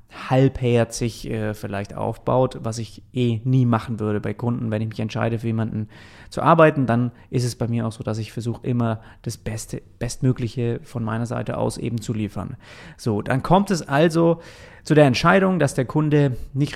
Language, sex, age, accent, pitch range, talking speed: German, male, 30-49, German, 115-135 Hz, 190 wpm